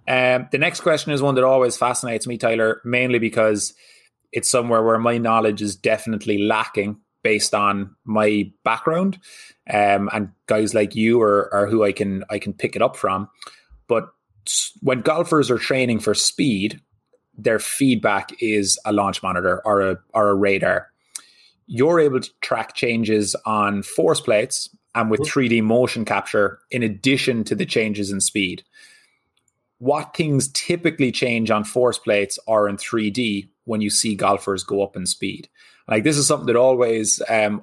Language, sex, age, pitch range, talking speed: English, male, 20-39, 105-125 Hz, 165 wpm